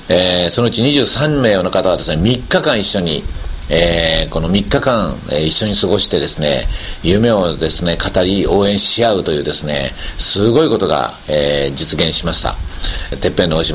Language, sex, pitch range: Japanese, male, 75-100 Hz